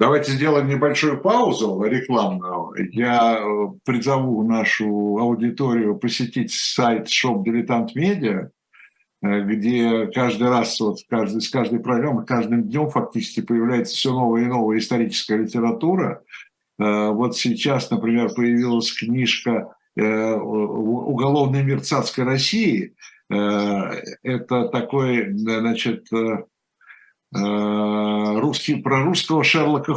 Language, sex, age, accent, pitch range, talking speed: Russian, male, 60-79, native, 110-135 Hz, 90 wpm